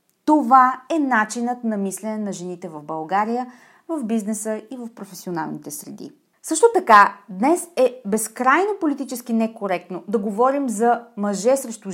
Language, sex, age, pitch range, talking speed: Bulgarian, female, 30-49, 195-270 Hz, 135 wpm